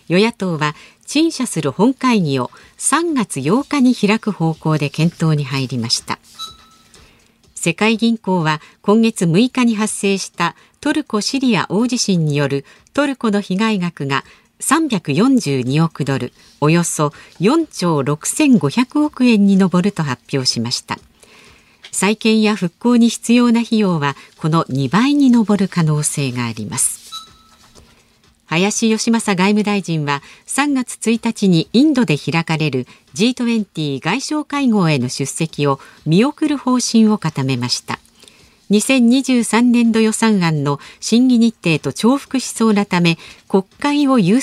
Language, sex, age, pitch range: Japanese, female, 50-69, 155-235 Hz